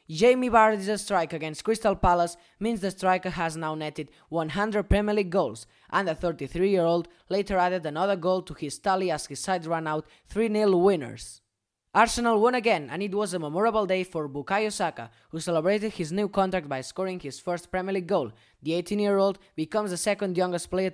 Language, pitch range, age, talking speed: English, 155-205 Hz, 20-39, 185 wpm